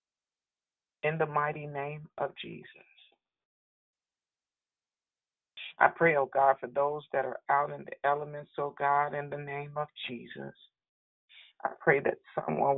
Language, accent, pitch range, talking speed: English, American, 140-170 Hz, 135 wpm